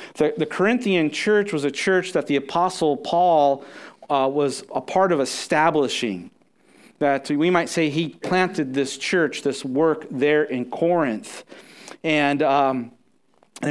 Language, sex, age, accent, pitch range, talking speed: English, male, 40-59, American, 140-185 Hz, 140 wpm